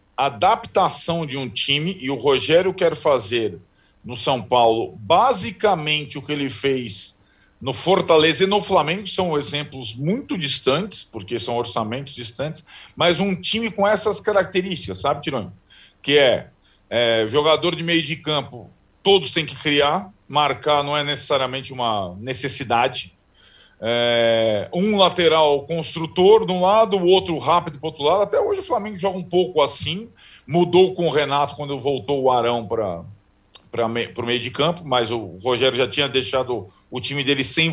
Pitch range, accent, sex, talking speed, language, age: 125-180 Hz, Brazilian, male, 160 wpm, Portuguese, 40-59